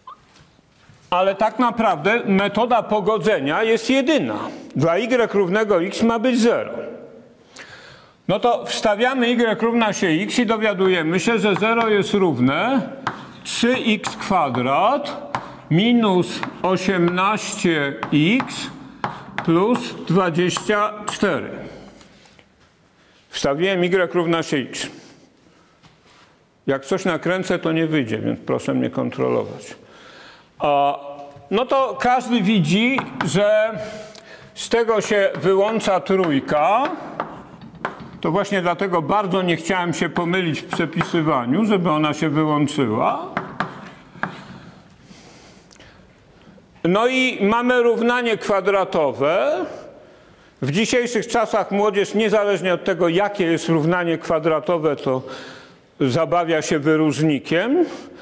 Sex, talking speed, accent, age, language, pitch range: male, 95 wpm, native, 50-69, Polish, 165-220 Hz